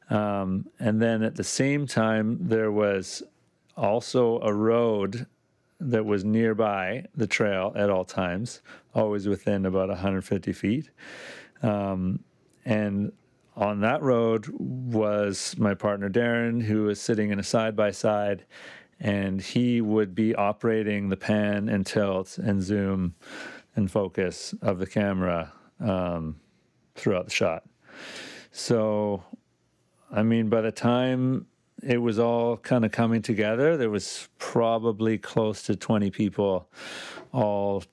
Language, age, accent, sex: English, 40-59, American, male